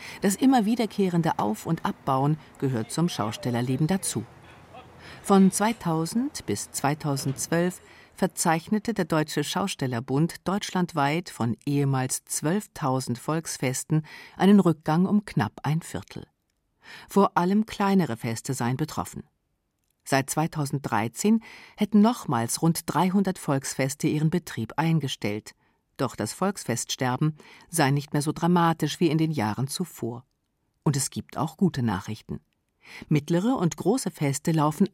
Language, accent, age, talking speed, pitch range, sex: German, German, 50-69, 120 wpm, 130-180 Hz, female